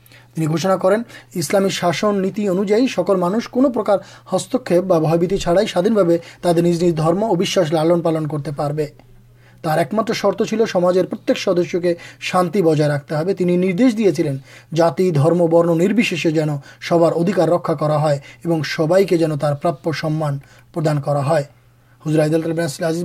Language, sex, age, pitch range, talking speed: Urdu, male, 30-49, 155-190 Hz, 130 wpm